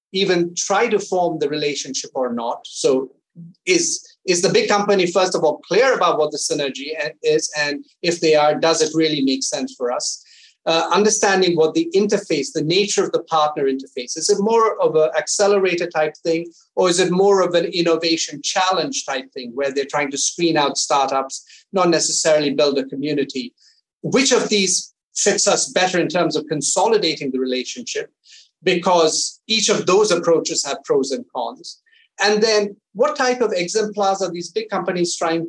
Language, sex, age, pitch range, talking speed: English, male, 30-49, 155-210 Hz, 180 wpm